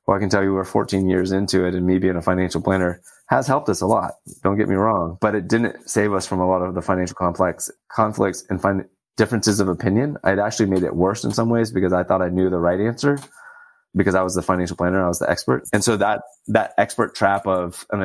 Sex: male